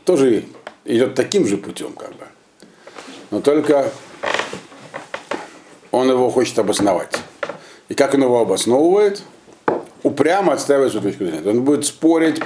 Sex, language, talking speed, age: male, Russian, 125 wpm, 50-69